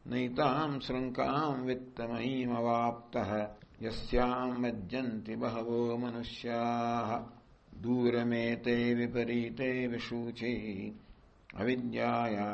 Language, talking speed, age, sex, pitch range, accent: English, 70 wpm, 60-79, male, 115-125 Hz, Indian